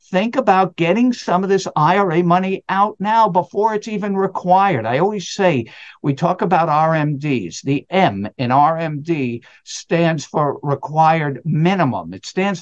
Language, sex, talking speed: English, male, 145 wpm